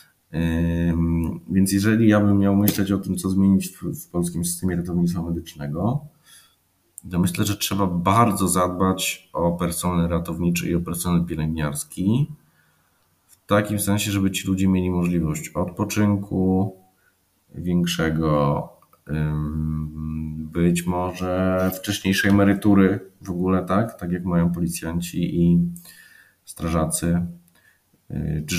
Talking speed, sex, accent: 110 wpm, male, native